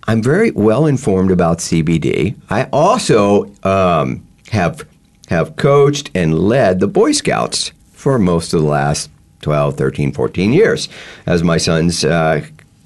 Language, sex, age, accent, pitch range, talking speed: English, male, 50-69, American, 80-115 Hz, 140 wpm